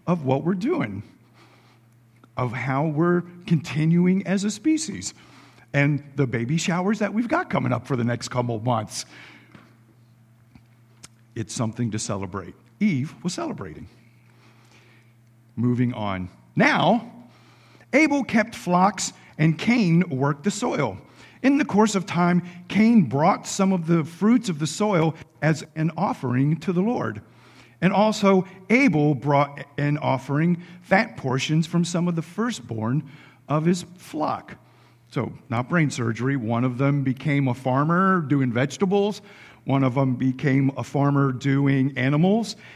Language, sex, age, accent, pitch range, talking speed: English, male, 50-69, American, 125-185 Hz, 140 wpm